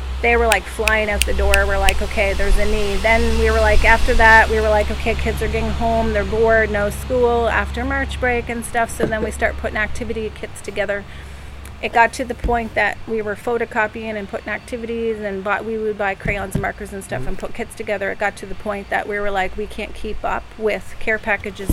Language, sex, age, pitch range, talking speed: English, female, 30-49, 195-225 Hz, 235 wpm